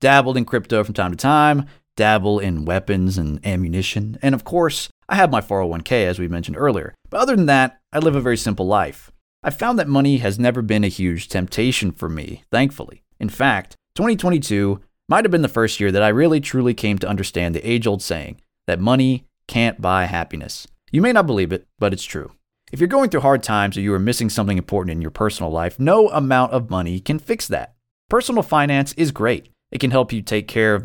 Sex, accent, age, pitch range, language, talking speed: male, American, 30-49, 95-130 Hz, English, 220 wpm